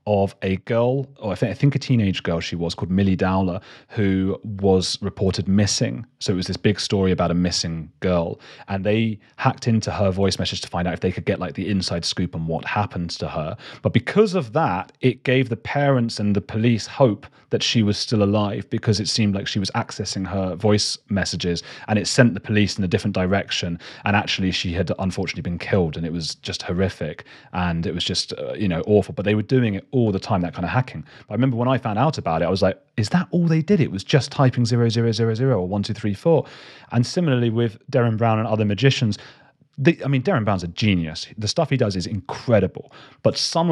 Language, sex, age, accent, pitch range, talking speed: English, male, 30-49, British, 95-120 Hz, 230 wpm